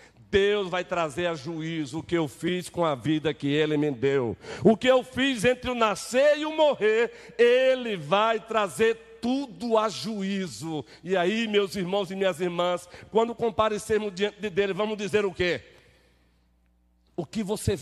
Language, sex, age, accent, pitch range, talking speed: Portuguese, male, 60-79, Brazilian, 150-205 Hz, 170 wpm